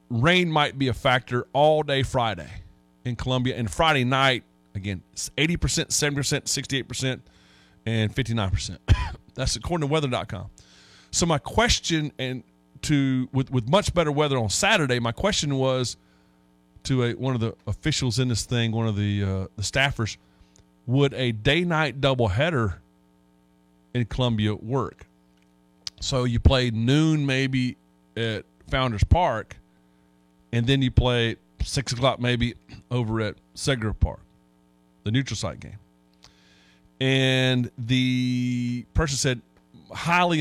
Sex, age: male, 30-49